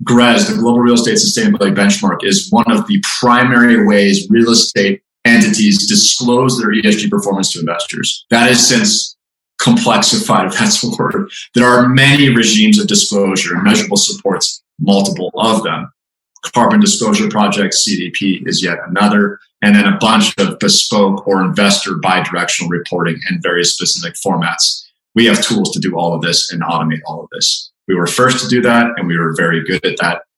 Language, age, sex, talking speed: English, 30-49, male, 175 wpm